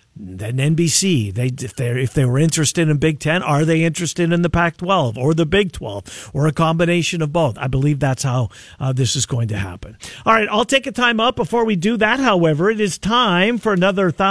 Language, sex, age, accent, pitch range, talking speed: English, male, 50-69, American, 145-205 Hz, 220 wpm